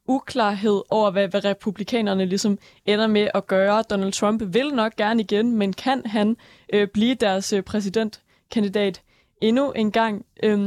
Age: 20-39